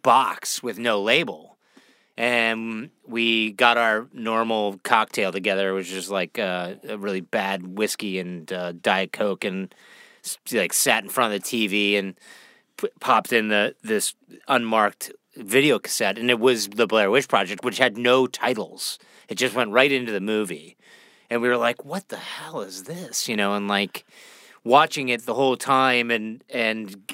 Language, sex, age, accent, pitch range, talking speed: English, male, 30-49, American, 105-130 Hz, 170 wpm